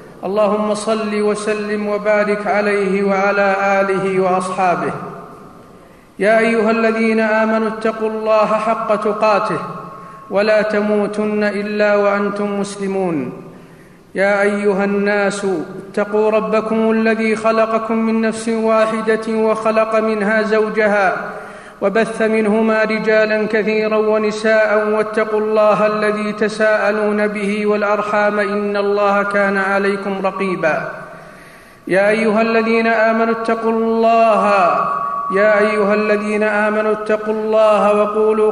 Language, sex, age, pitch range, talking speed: Arabic, male, 50-69, 205-220 Hz, 100 wpm